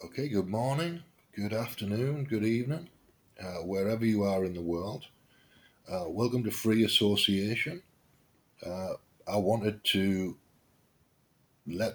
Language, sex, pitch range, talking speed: English, male, 95-110 Hz, 120 wpm